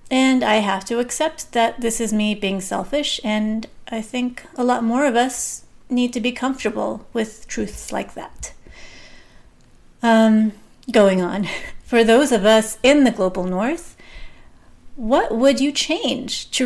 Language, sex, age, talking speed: English, female, 30-49, 155 wpm